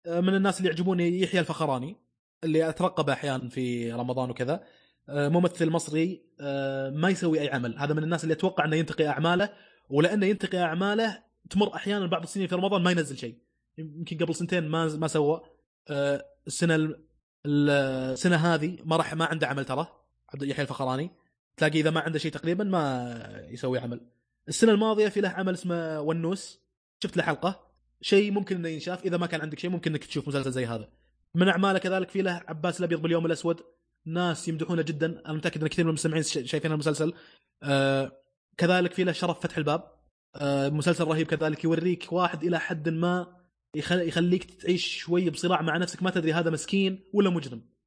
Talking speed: 170 wpm